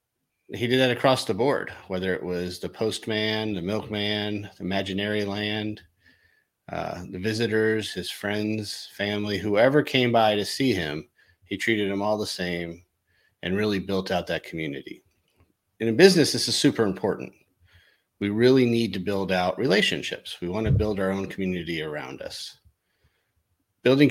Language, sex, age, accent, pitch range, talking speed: English, male, 40-59, American, 95-110 Hz, 160 wpm